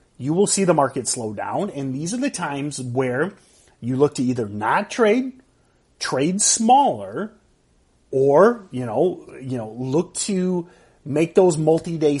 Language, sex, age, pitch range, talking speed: English, male, 30-49, 130-185 Hz, 150 wpm